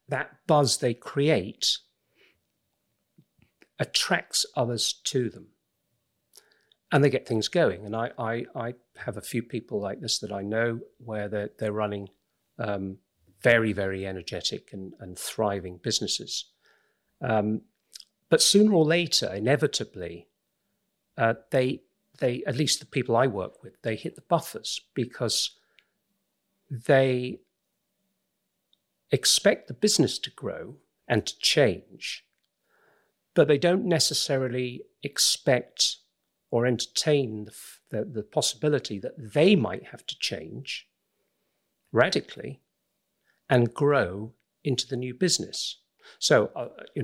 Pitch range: 105-150 Hz